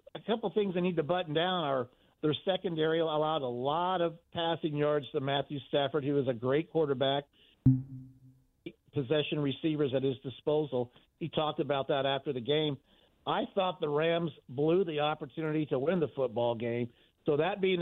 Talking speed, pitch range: 175 wpm, 140-165 Hz